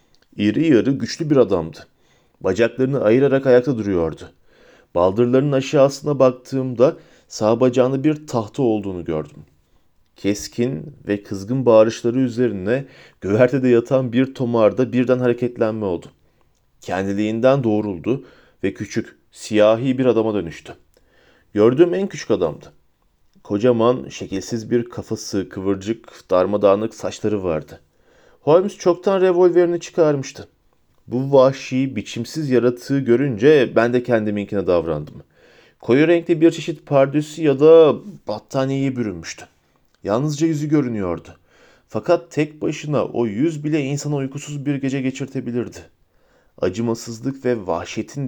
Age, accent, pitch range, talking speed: 40-59, native, 110-140 Hz, 110 wpm